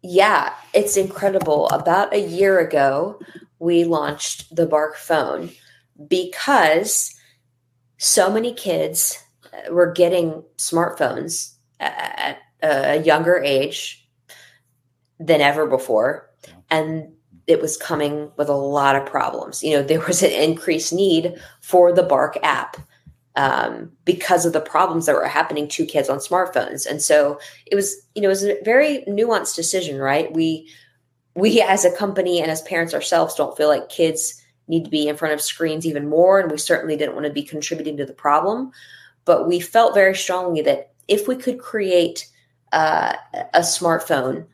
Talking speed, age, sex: 160 wpm, 20-39, female